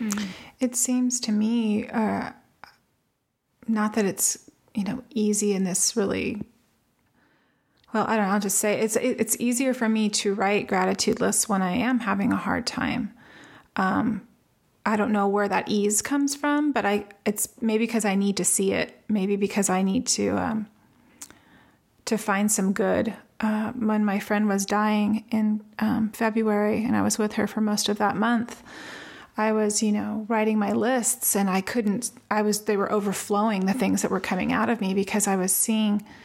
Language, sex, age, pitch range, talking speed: English, female, 30-49, 205-230 Hz, 185 wpm